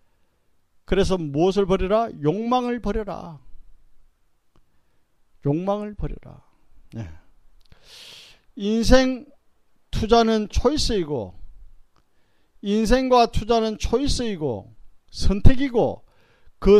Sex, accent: male, native